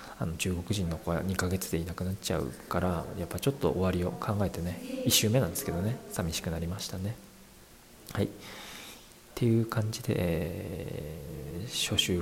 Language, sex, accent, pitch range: Japanese, male, native, 90-110 Hz